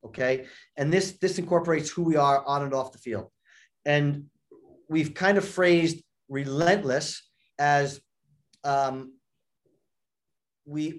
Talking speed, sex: 120 wpm, male